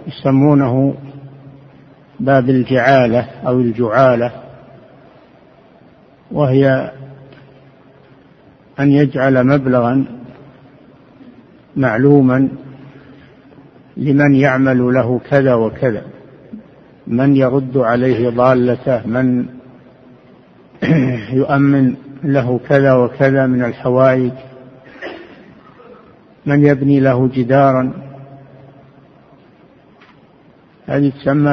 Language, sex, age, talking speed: Arabic, male, 60-79, 60 wpm